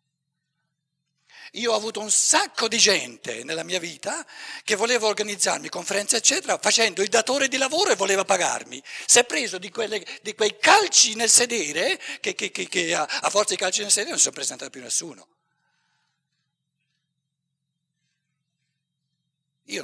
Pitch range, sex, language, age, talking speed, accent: 160-235 Hz, male, Italian, 60-79, 150 wpm, native